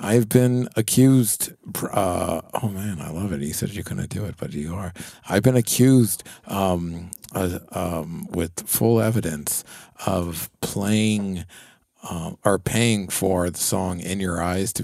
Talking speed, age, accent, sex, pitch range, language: 160 wpm, 50-69, American, male, 90-115 Hz, English